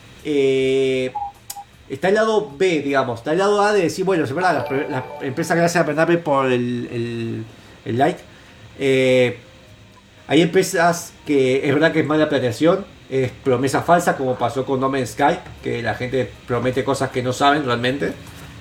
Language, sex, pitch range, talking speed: Spanish, male, 130-170 Hz, 170 wpm